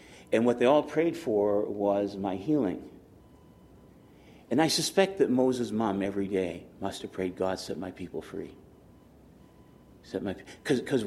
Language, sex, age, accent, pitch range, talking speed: English, male, 50-69, American, 100-120 Hz, 140 wpm